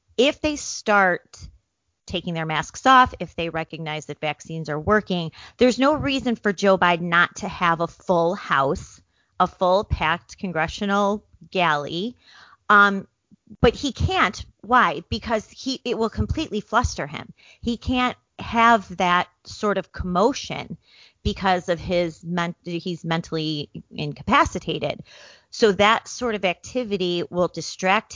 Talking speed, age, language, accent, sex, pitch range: 135 wpm, 30-49, English, American, female, 160-215 Hz